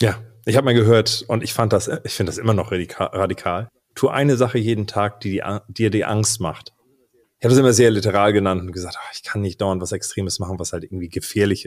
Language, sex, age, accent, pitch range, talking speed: German, male, 30-49, German, 95-120 Hz, 245 wpm